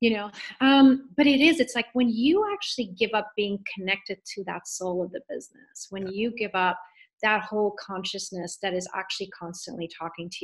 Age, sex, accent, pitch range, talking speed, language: 30-49, female, American, 205-295 Hz, 195 wpm, English